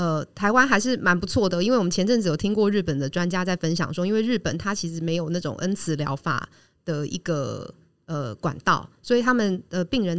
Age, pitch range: 30-49, 160-210 Hz